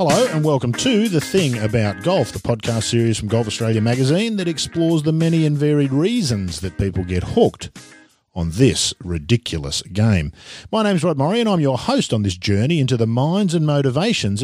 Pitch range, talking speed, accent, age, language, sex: 95-145 Hz, 195 wpm, Australian, 50-69, English, male